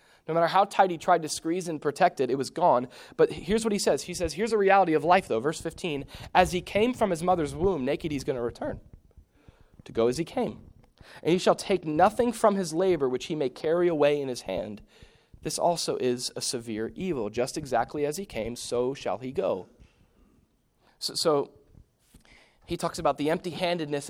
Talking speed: 210 wpm